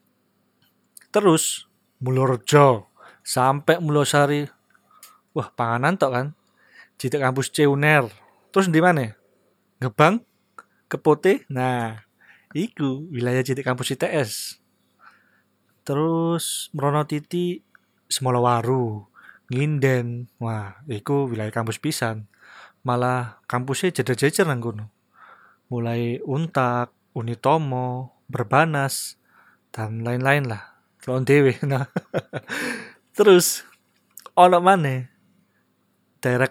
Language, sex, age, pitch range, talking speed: Indonesian, male, 20-39, 115-145 Hz, 80 wpm